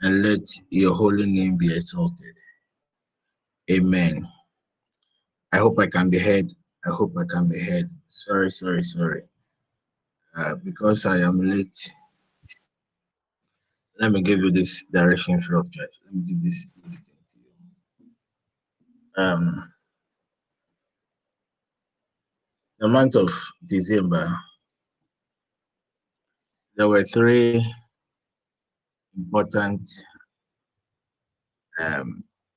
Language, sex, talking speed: English, male, 90 wpm